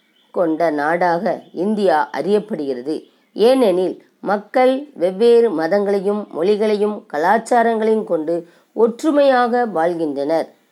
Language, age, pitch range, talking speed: Tamil, 20-39, 175-235 Hz, 75 wpm